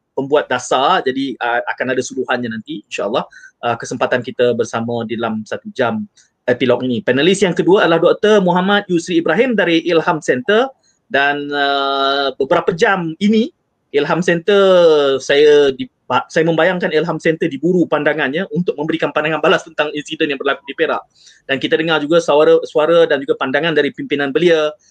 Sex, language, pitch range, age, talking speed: male, Malay, 135-200 Hz, 20-39, 160 wpm